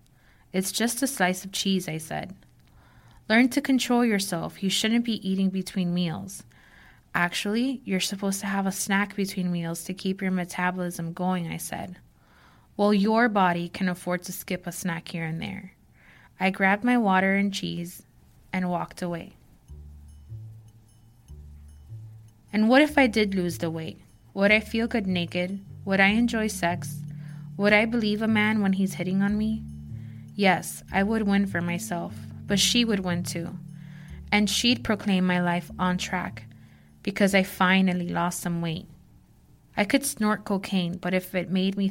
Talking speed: 165 wpm